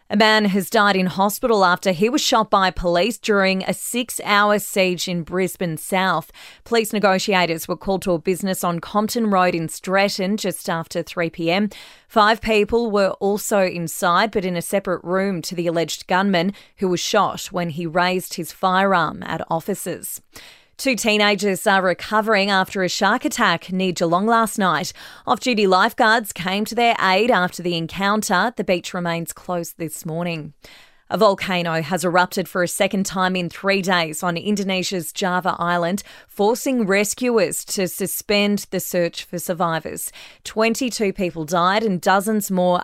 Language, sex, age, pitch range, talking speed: English, female, 20-39, 175-205 Hz, 160 wpm